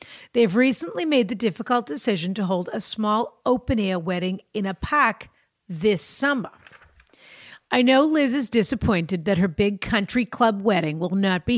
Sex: female